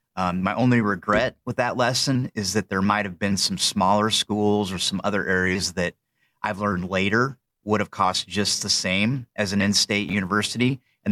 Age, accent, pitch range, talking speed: 30-49, American, 90-110 Hz, 190 wpm